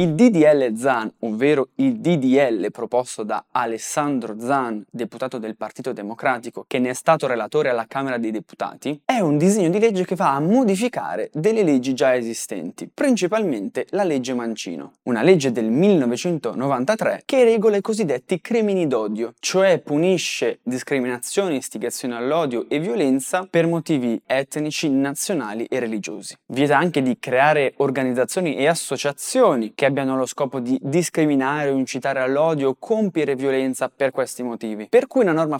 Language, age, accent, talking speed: Italian, 20-39, native, 150 wpm